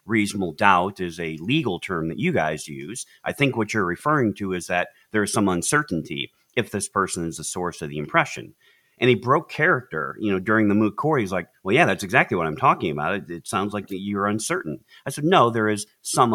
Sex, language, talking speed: male, English, 230 wpm